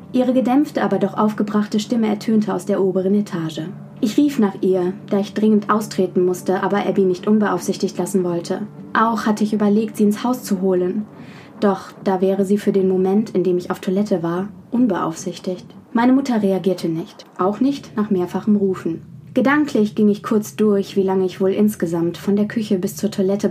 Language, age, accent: German, 20-39, German